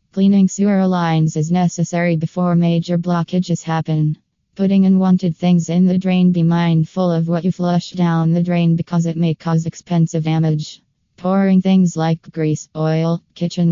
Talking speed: 155 wpm